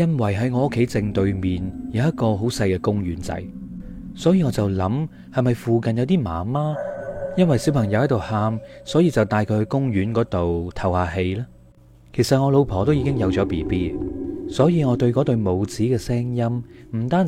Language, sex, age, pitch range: Chinese, male, 30-49, 95-130 Hz